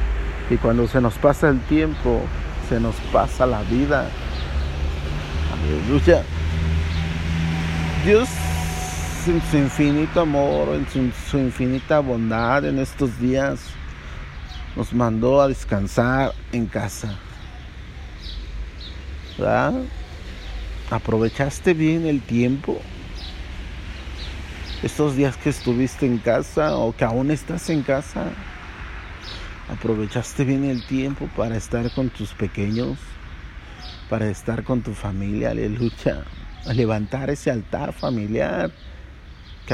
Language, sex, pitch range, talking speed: Spanish, male, 80-130 Hz, 105 wpm